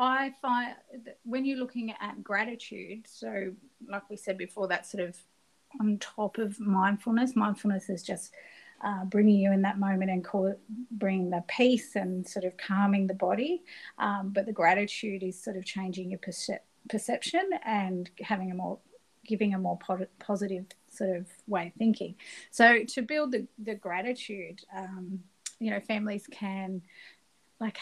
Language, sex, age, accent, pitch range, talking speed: English, female, 30-49, Australian, 190-230 Hz, 170 wpm